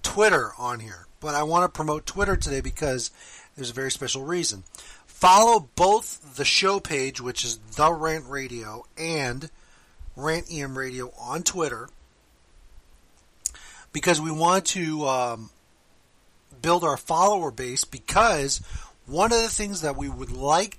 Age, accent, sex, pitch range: 40-59, American, male, 130-170 Hz